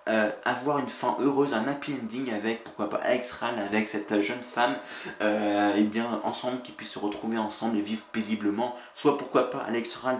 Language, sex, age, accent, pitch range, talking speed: French, male, 20-39, French, 105-135 Hz, 200 wpm